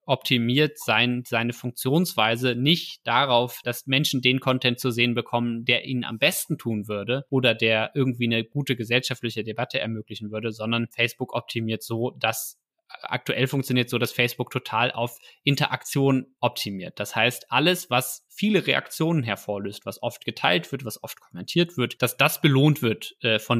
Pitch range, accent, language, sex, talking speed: 115-135 Hz, German, German, male, 160 wpm